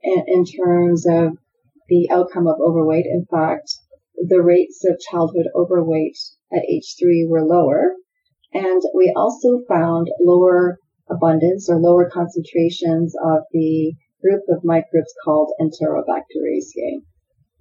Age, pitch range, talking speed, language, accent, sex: 40-59, 160-185 Hz, 120 wpm, English, American, female